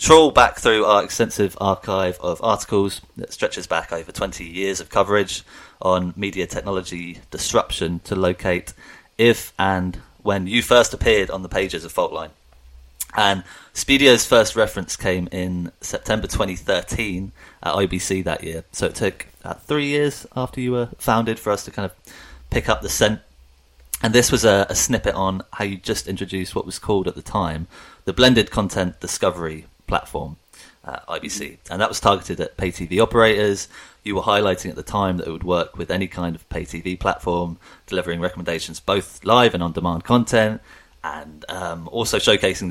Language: English